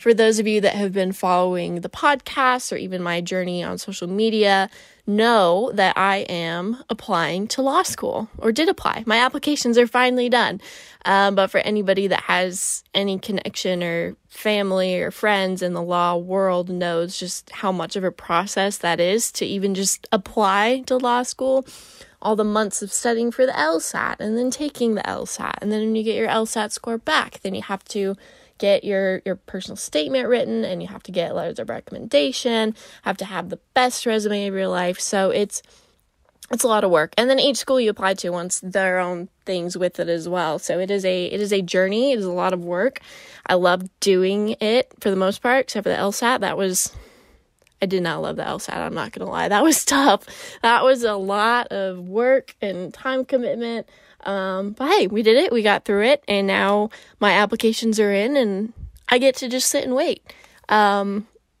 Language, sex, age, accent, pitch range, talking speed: English, female, 10-29, American, 185-240 Hz, 205 wpm